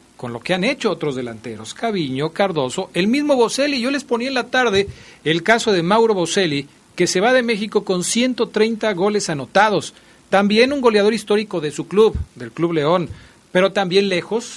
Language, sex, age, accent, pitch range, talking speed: Portuguese, male, 40-59, Mexican, 135-195 Hz, 185 wpm